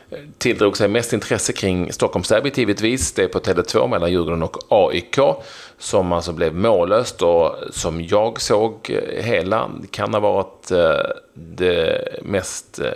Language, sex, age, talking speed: Swedish, male, 30-49, 135 wpm